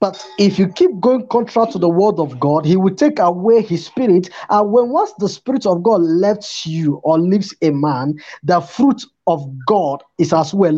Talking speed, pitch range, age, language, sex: 205 wpm, 165-225 Hz, 20-39, English, male